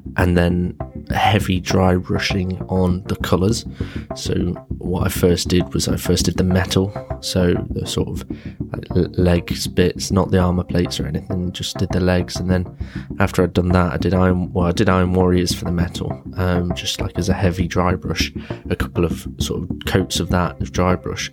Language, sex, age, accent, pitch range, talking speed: English, male, 20-39, British, 90-95 Hz, 205 wpm